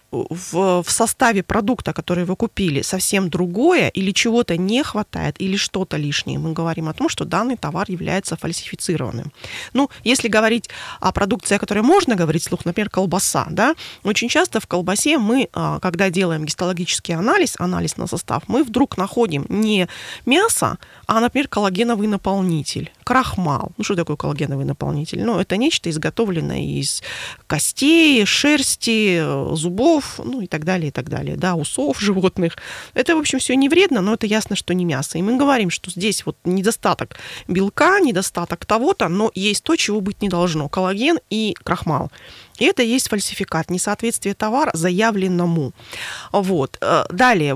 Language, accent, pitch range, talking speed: Russian, native, 175-235 Hz, 155 wpm